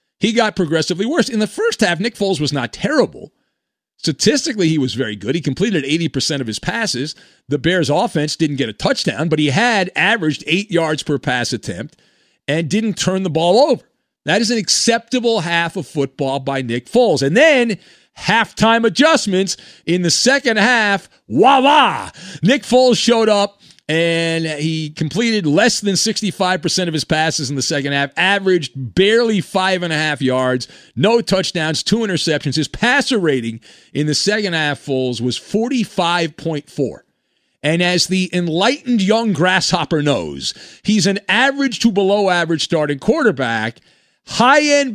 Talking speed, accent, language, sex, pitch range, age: 160 wpm, American, English, male, 155-220 Hz, 40-59